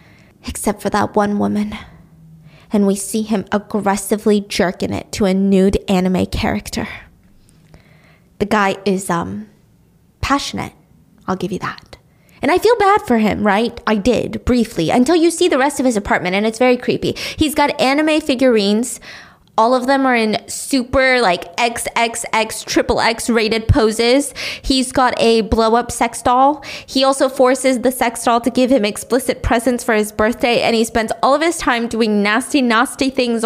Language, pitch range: English, 220-285 Hz